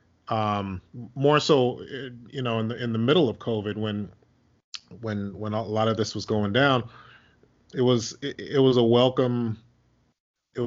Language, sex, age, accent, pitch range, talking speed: English, male, 30-49, American, 105-135 Hz, 170 wpm